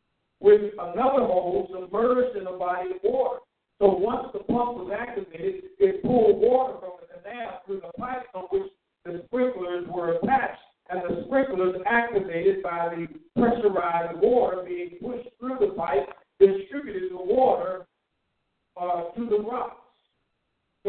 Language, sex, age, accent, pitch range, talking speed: English, male, 50-69, American, 185-245 Hz, 145 wpm